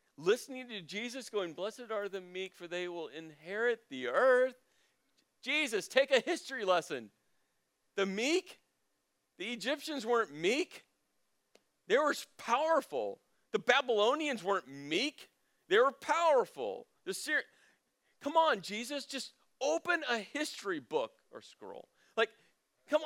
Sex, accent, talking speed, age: male, American, 130 wpm, 40-59